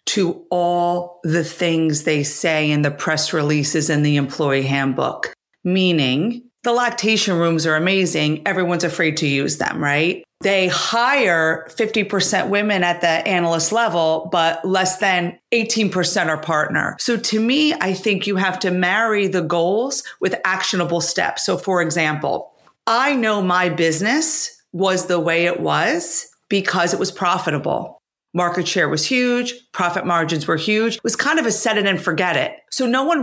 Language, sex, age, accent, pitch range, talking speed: English, female, 40-59, American, 170-230 Hz, 165 wpm